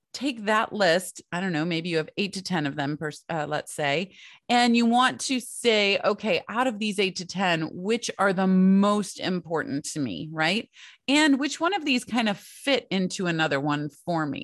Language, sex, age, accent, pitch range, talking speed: English, female, 30-49, American, 160-220 Hz, 210 wpm